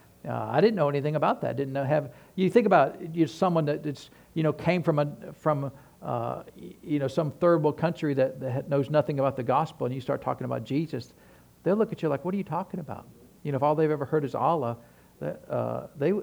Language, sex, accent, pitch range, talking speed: English, male, American, 140-175 Hz, 240 wpm